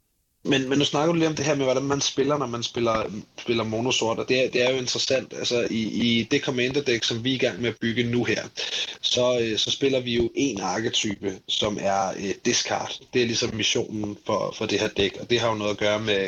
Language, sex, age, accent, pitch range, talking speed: Danish, male, 30-49, native, 105-120 Hz, 245 wpm